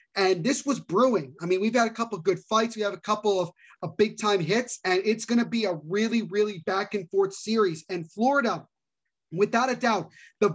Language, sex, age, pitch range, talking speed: English, male, 30-49, 190-230 Hz, 210 wpm